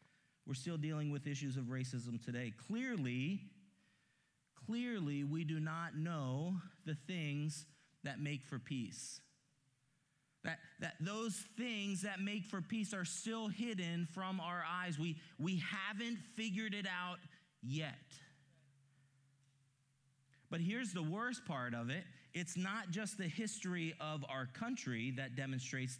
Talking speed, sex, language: 135 wpm, male, English